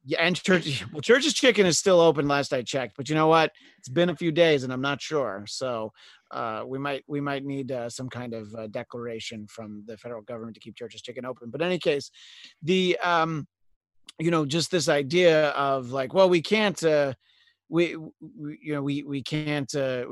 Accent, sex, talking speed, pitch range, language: American, male, 215 wpm, 125-170 Hz, English